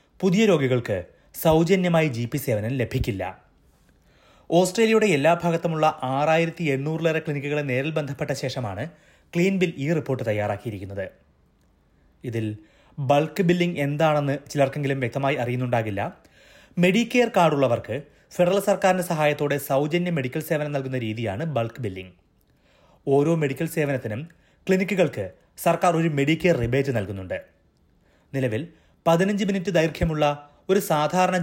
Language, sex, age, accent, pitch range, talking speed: Malayalam, male, 30-49, native, 125-170 Hz, 105 wpm